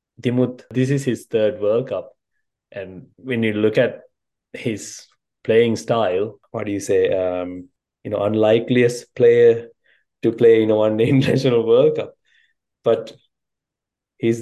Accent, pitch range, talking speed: Indian, 110-135 Hz, 140 wpm